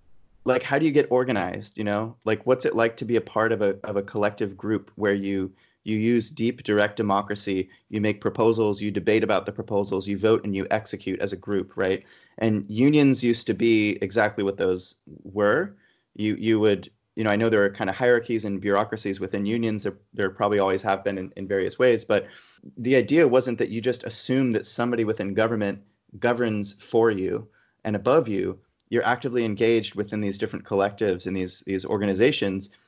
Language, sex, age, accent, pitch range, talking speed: English, male, 30-49, American, 100-115 Hz, 200 wpm